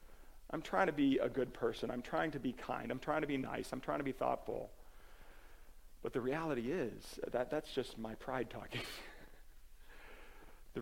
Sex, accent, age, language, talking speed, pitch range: male, American, 40-59, English, 185 wpm, 110-165 Hz